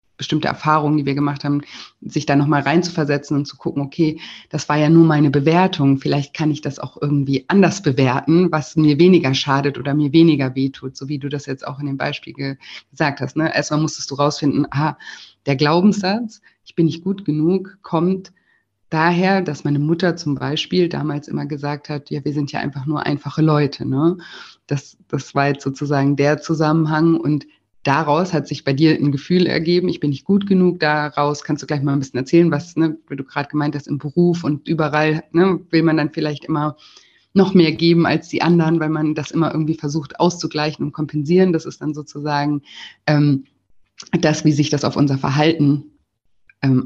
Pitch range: 145-165 Hz